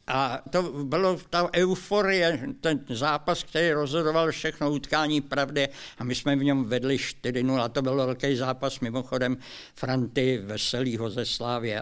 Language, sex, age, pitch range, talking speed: Czech, male, 60-79, 125-165 Hz, 145 wpm